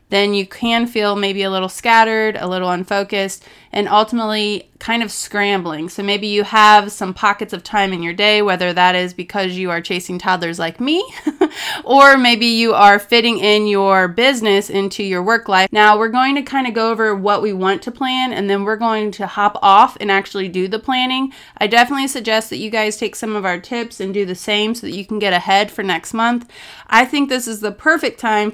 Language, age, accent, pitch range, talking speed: English, 30-49, American, 195-225 Hz, 220 wpm